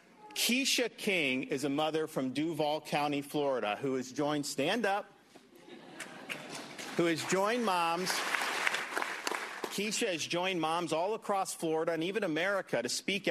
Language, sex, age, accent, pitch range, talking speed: English, male, 40-59, American, 145-185 Hz, 135 wpm